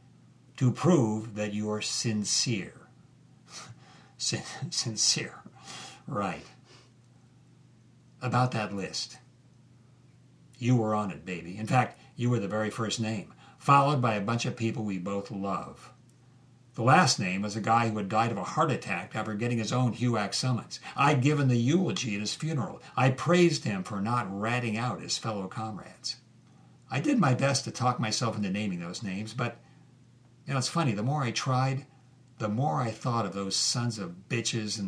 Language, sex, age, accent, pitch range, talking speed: English, male, 50-69, American, 100-130 Hz, 170 wpm